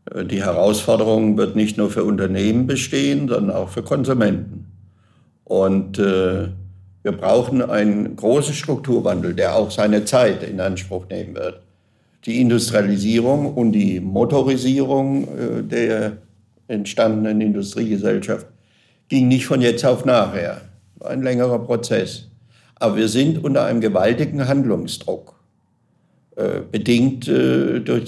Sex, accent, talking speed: male, German, 120 wpm